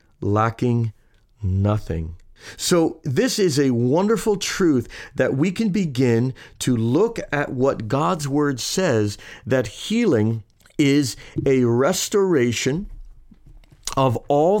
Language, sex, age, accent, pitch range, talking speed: English, male, 50-69, American, 105-135 Hz, 105 wpm